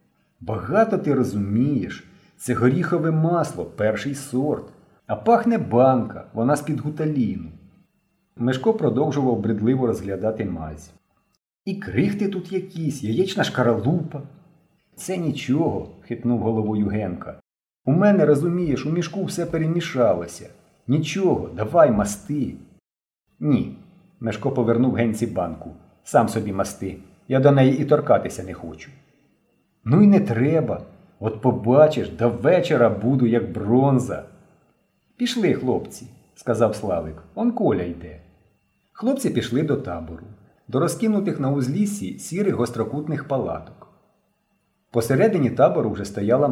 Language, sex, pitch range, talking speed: Ukrainian, male, 110-165 Hz, 120 wpm